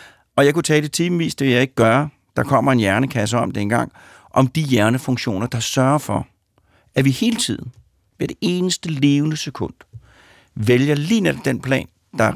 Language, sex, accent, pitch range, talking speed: Danish, male, native, 105-150 Hz, 195 wpm